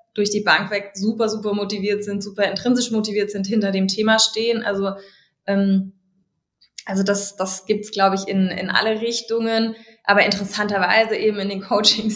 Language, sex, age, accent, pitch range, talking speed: German, female, 20-39, German, 195-220 Hz, 175 wpm